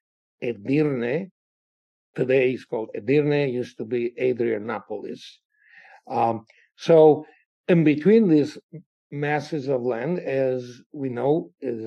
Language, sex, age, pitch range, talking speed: English, male, 60-79, 125-160 Hz, 105 wpm